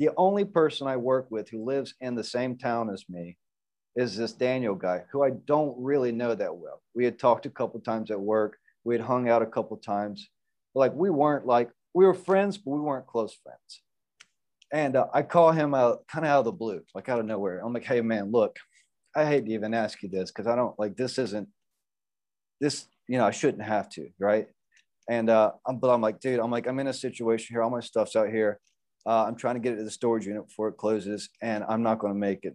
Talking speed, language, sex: 245 wpm, English, male